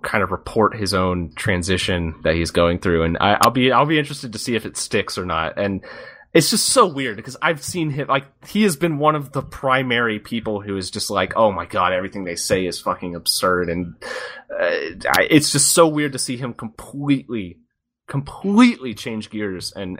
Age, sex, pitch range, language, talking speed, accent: 30-49, male, 95-130 Hz, English, 205 wpm, American